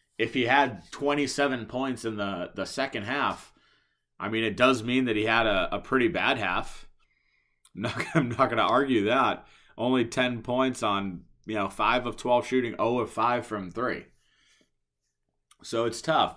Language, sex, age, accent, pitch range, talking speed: English, male, 30-49, American, 100-130 Hz, 170 wpm